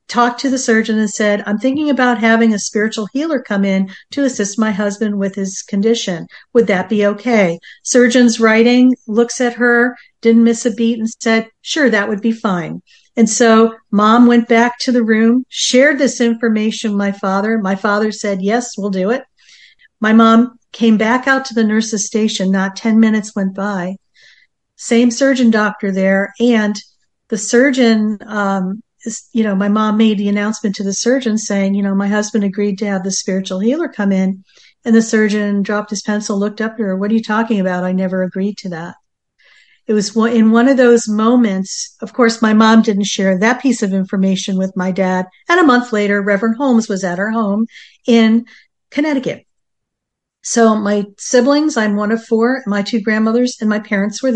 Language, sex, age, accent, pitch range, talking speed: English, female, 50-69, American, 205-235 Hz, 190 wpm